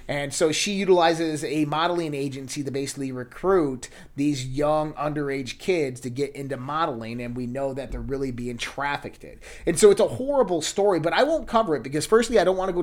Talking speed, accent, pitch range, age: 205 wpm, American, 135-165 Hz, 30-49